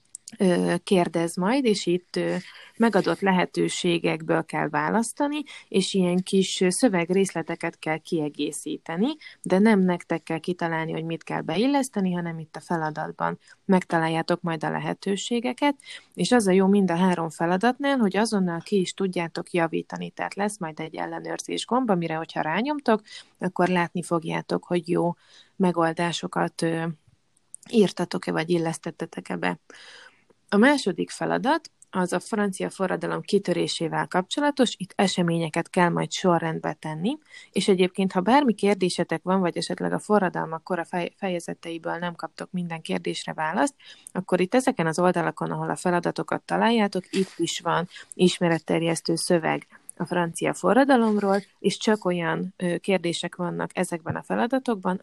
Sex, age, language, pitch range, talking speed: female, 20-39, Hungarian, 165-200 Hz, 135 wpm